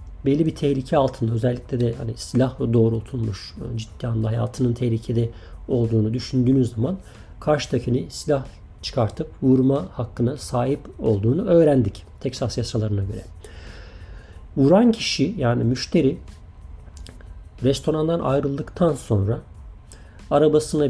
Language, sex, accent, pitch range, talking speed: Turkish, male, native, 100-140 Hz, 105 wpm